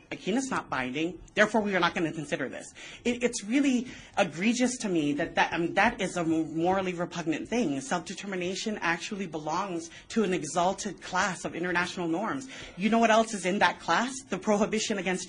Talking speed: 175 wpm